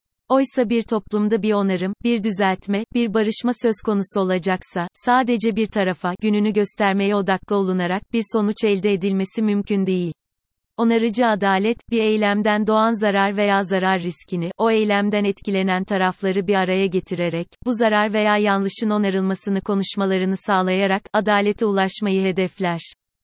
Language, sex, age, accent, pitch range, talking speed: Turkish, female, 30-49, native, 190-220 Hz, 130 wpm